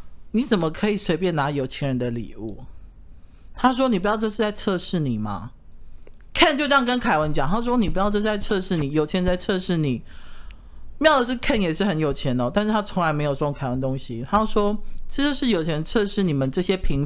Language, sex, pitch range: Chinese, male, 130-200 Hz